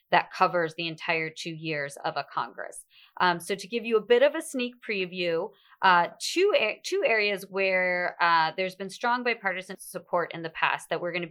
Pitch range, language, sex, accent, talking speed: 170-195 Hz, English, female, American, 200 wpm